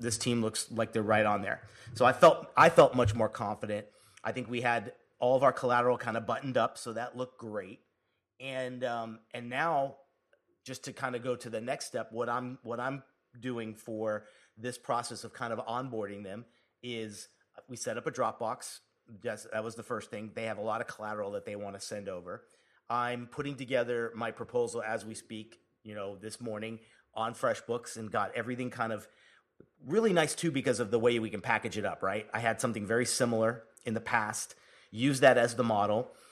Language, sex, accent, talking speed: English, male, American, 210 wpm